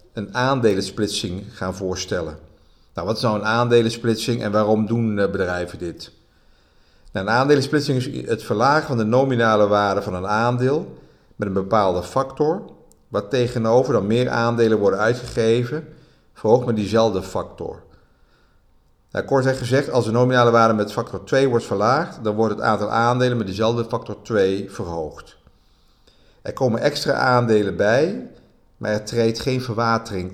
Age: 50-69